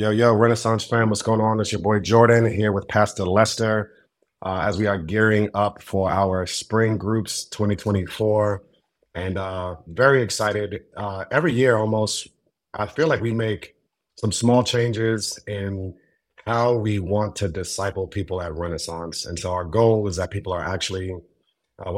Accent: American